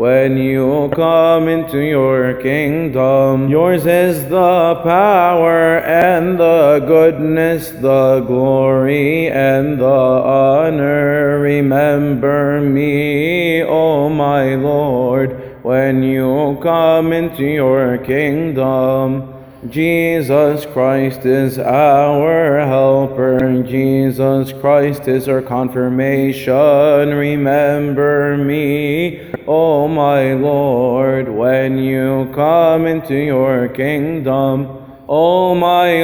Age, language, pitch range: 20-39, English, 135-160 Hz